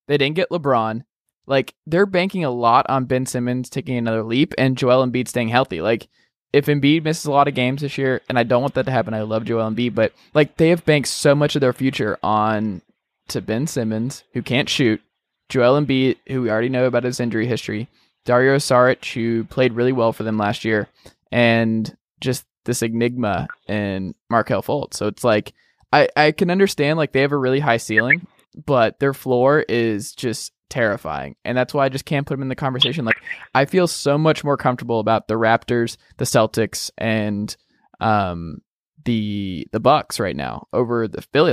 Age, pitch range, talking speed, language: 20-39, 115-140 Hz, 200 wpm, English